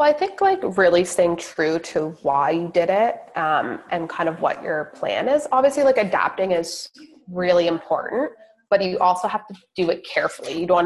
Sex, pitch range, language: female, 170-215 Hz, English